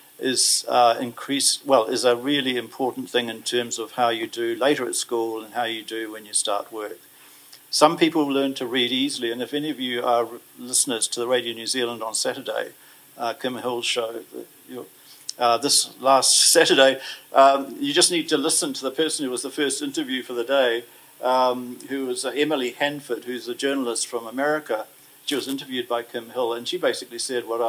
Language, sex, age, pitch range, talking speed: English, male, 50-69, 120-150 Hz, 200 wpm